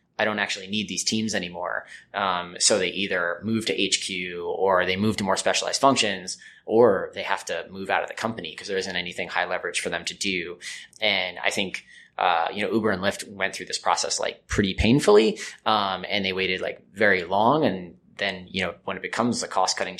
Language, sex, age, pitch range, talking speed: English, male, 20-39, 95-110 Hz, 220 wpm